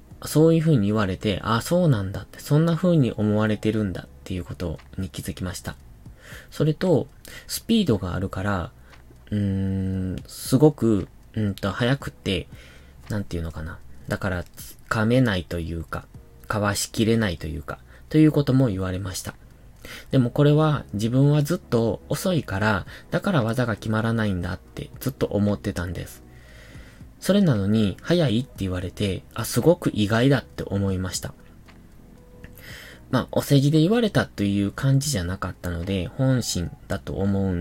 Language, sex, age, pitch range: Japanese, male, 20-39, 90-130 Hz